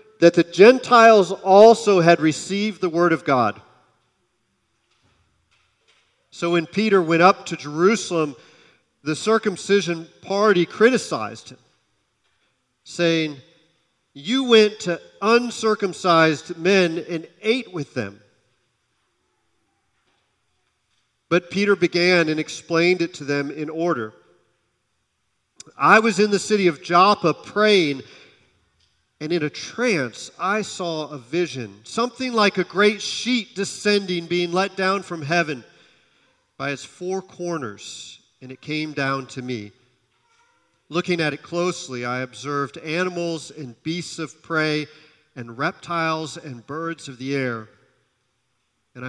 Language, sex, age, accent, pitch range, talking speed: English, male, 40-59, American, 130-190 Hz, 120 wpm